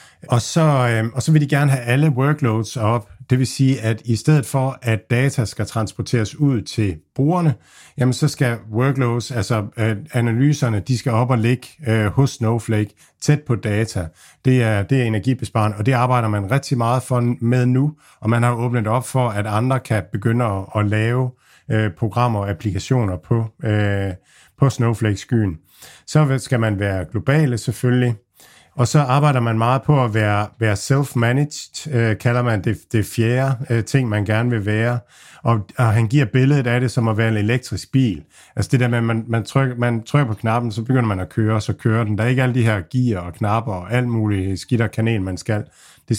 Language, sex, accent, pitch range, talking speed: Danish, male, native, 105-130 Hz, 195 wpm